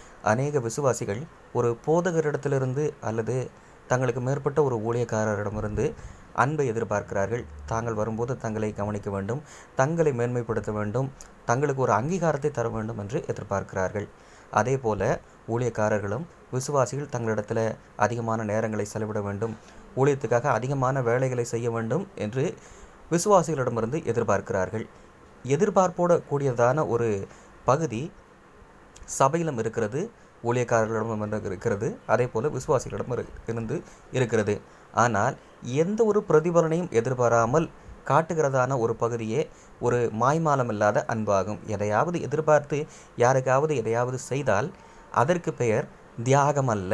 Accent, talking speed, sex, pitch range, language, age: native, 95 wpm, male, 110-145 Hz, Tamil, 20-39